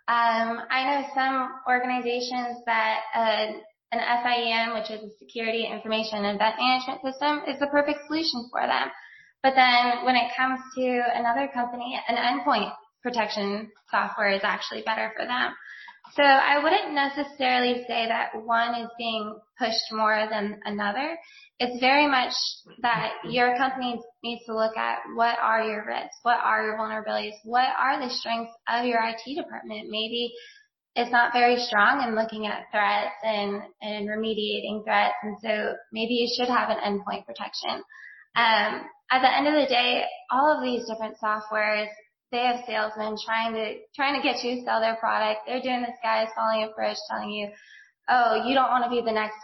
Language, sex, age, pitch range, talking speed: English, female, 20-39, 220-255 Hz, 175 wpm